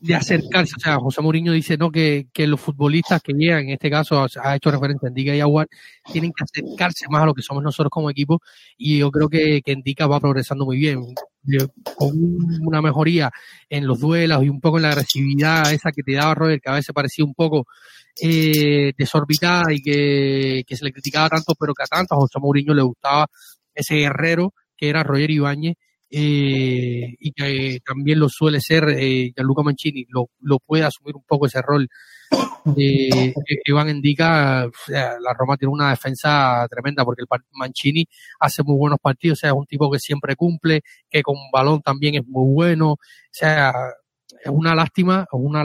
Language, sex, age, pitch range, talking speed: Spanish, male, 30-49, 140-155 Hz, 200 wpm